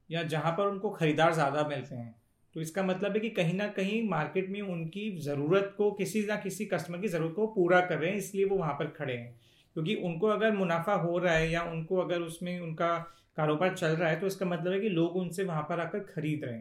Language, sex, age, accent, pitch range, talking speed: Hindi, male, 40-59, native, 160-200 Hz, 240 wpm